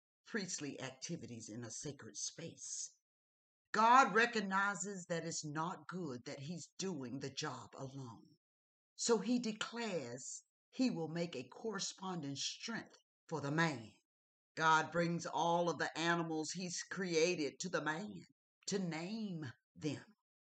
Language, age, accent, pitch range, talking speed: English, 50-69, American, 155-235 Hz, 130 wpm